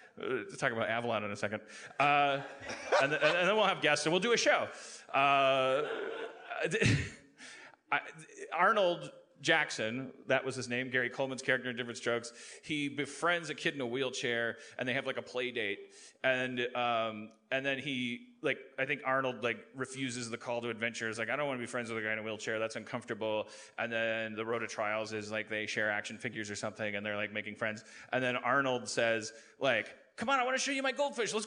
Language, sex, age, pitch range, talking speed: English, male, 30-49, 120-160 Hz, 215 wpm